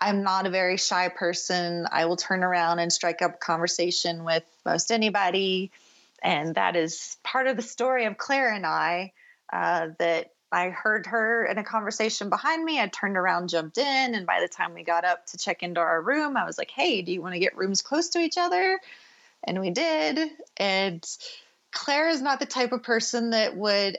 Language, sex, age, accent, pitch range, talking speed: English, female, 30-49, American, 175-230 Hz, 205 wpm